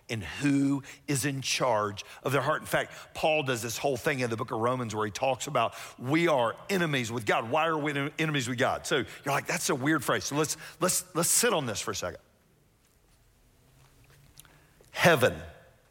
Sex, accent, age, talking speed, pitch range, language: male, American, 50-69, 200 wpm, 120-165 Hz, English